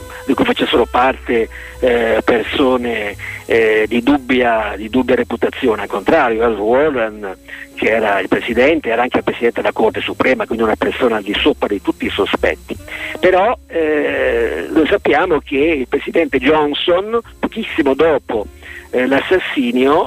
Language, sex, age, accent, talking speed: Italian, male, 50-69, native, 145 wpm